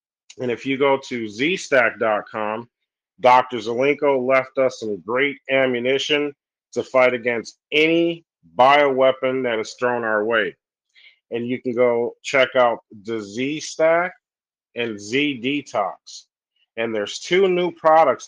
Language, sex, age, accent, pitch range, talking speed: English, male, 40-59, American, 115-145 Hz, 130 wpm